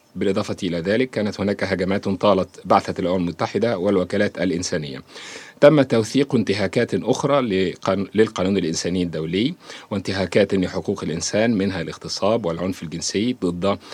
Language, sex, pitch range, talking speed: Arabic, male, 90-110 Hz, 115 wpm